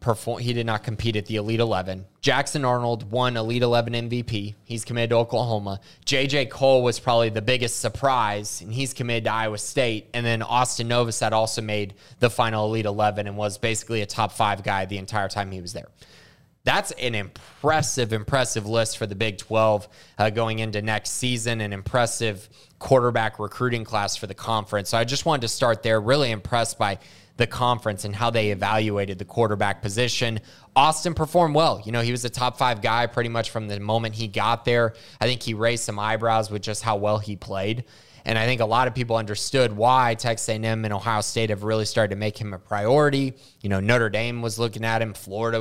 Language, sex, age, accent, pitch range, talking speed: English, male, 20-39, American, 105-120 Hz, 210 wpm